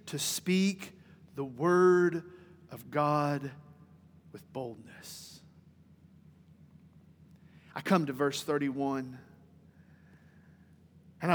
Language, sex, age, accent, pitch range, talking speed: English, male, 40-59, American, 175-220 Hz, 75 wpm